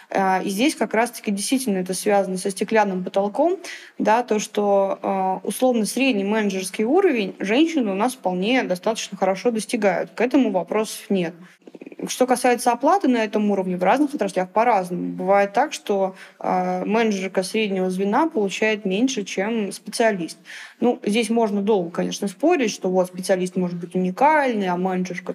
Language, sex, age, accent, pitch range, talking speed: Russian, female, 20-39, native, 185-225 Hz, 145 wpm